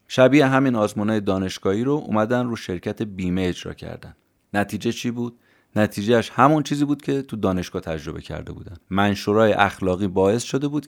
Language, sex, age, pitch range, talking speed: Persian, male, 30-49, 95-125 Hz, 165 wpm